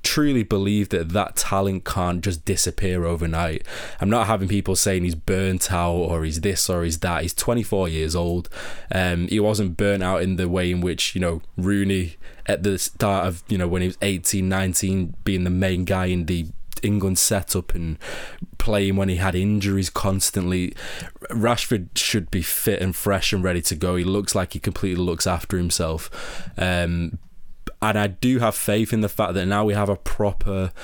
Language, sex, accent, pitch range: English, male, British, 90-105 Hz